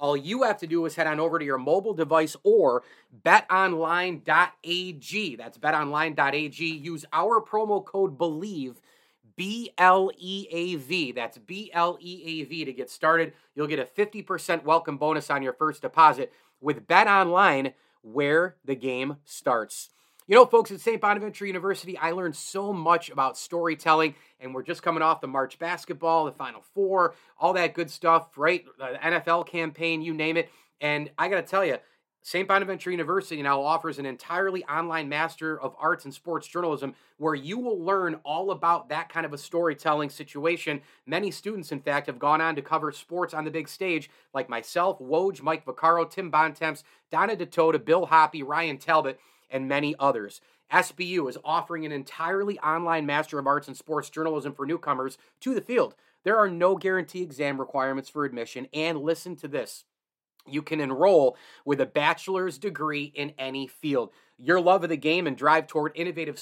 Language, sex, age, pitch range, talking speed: English, male, 30-49, 150-180 Hz, 170 wpm